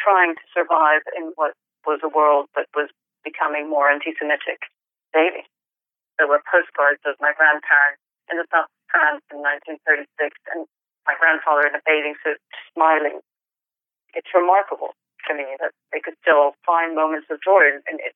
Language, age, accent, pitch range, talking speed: English, 40-59, American, 155-195 Hz, 160 wpm